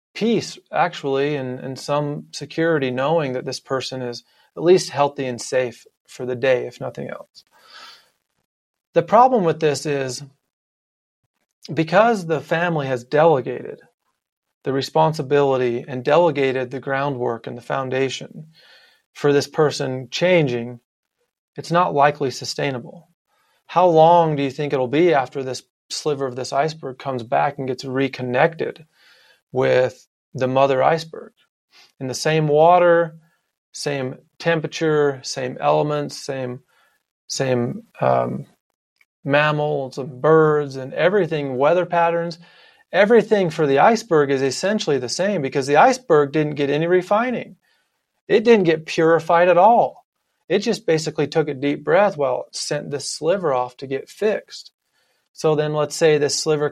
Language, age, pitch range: English, 30-49, 135-165 Hz